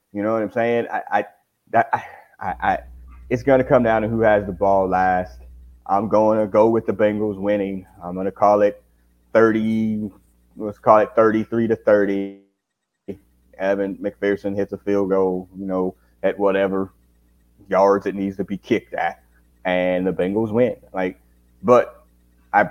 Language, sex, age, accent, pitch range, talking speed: English, male, 30-49, American, 90-120 Hz, 170 wpm